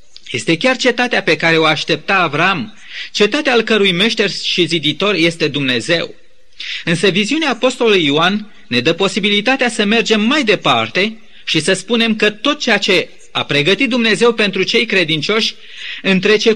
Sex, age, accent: male, 30-49, native